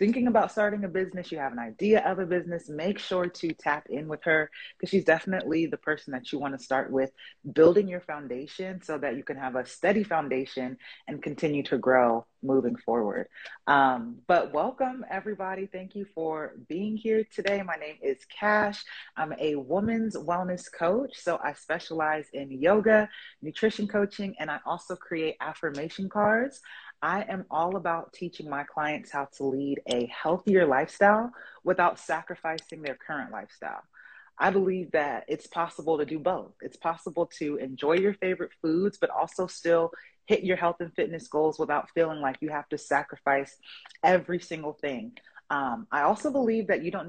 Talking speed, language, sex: 175 wpm, English, female